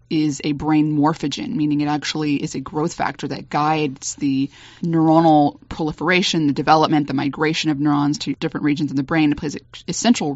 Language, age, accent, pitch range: English, 20-39, American, 145-160 Hz